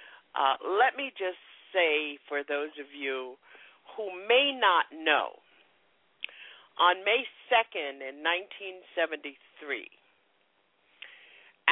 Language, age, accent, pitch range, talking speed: English, 50-69, American, 150-195 Hz, 90 wpm